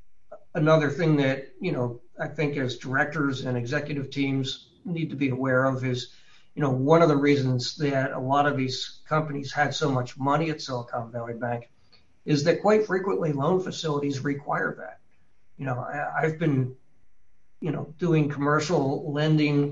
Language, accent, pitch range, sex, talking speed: English, American, 125-150 Hz, male, 165 wpm